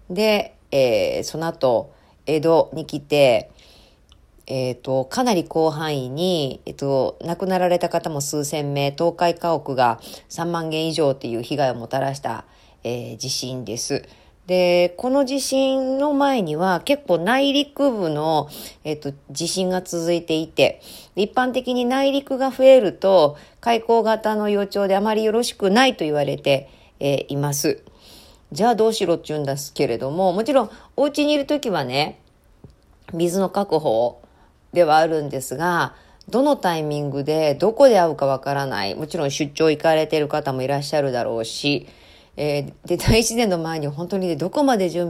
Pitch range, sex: 140-205 Hz, female